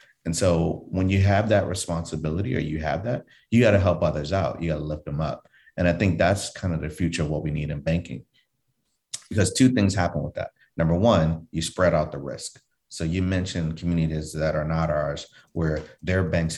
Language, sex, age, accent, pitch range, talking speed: English, male, 30-49, American, 80-95 Hz, 220 wpm